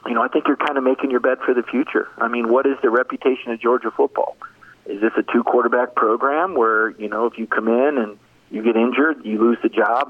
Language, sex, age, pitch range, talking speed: English, male, 40-59, 110-125 Hz, 250 wpm